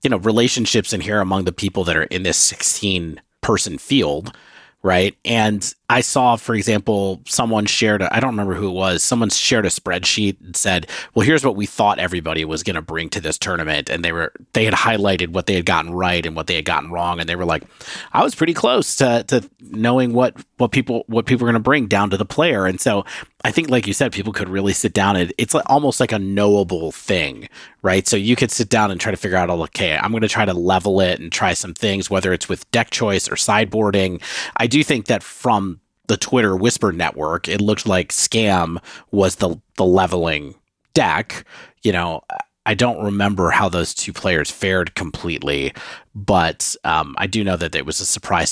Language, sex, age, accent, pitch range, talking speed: English, male, 30-49, American, 90-115 Hz, 220 wpm